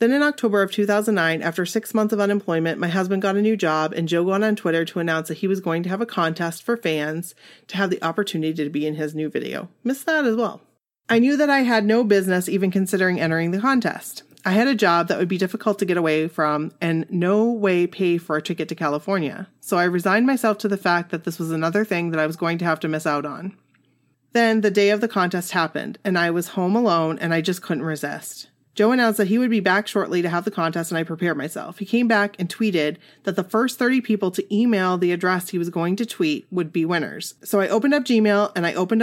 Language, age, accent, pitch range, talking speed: English, 30-49, American, 165-210 Hz, 255 wpm